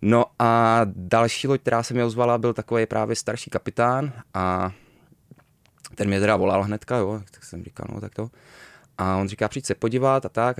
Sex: male